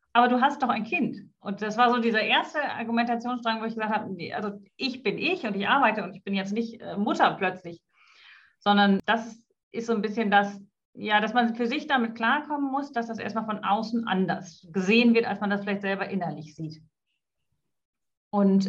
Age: 40-59